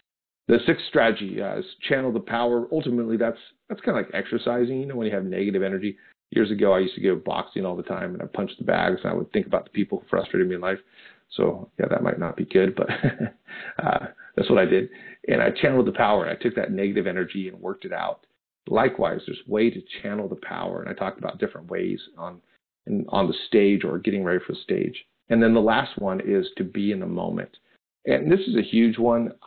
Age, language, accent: 40-59, English, American